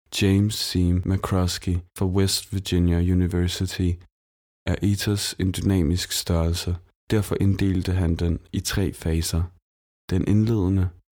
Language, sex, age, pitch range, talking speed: Danish, male, 20-39, 90-100 Hz, 115 wpm